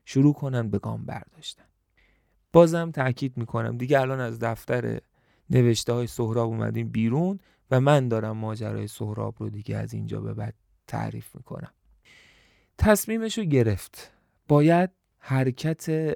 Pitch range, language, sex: 115-155 Hz, Persian, male